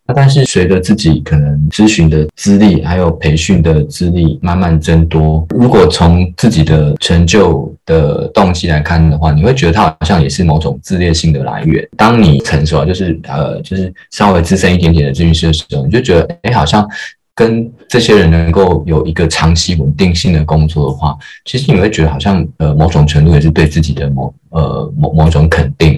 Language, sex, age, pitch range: Chinese, male, 20-39, 75-90 Hz